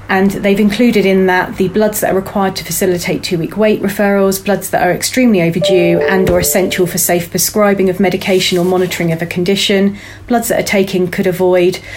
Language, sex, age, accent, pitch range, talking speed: English, female, 30-49, British, 180-200 Hz, 195 wpm